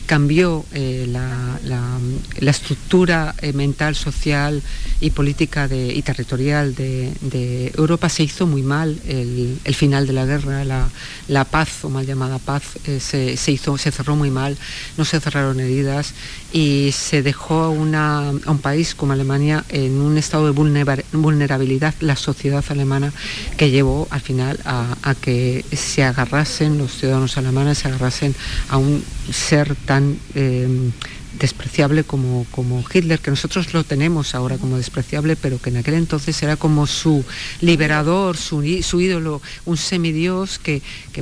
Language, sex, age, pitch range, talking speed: Spanish, female, 50-69, 130-155 Hz, 155 wpm